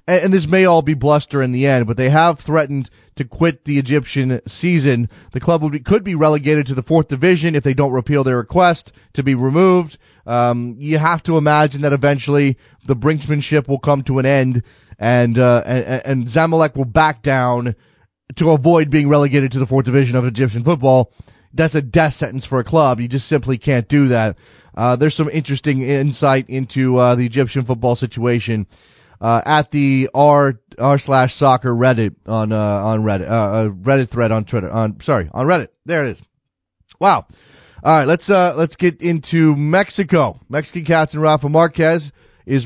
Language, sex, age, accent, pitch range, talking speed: English, male, 30-49, American, 125-150 Hz, 190 wpm